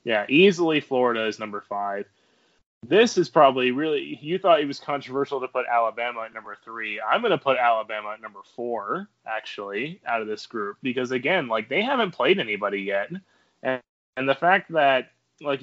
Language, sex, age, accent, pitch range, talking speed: English, male, 20-39, American, 110-140 Hz, 185 wpm